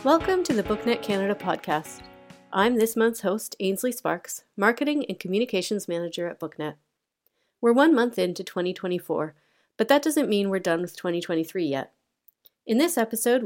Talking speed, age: 155 wpm, 30-49